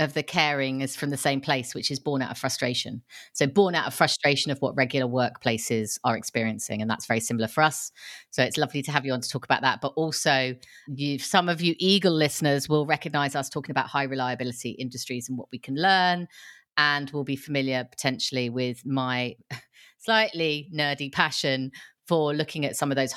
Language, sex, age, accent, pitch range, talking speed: English, female, 30-49, British, 125-165 Hz, 205 wpm